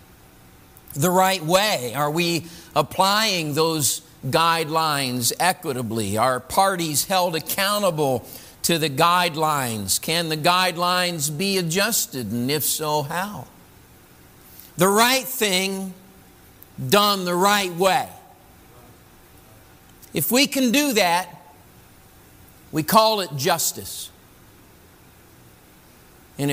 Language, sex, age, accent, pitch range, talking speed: English, male, 50-69, American, 140-190 Hz, 95 wpm